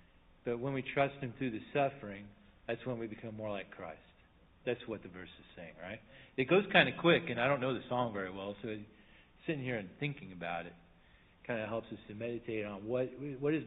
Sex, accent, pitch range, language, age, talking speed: male, American, 105-140 Hz, English, 40-59, 230 wpm